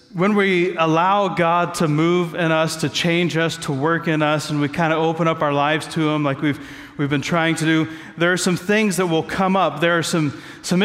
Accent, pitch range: American, 140-170 Hz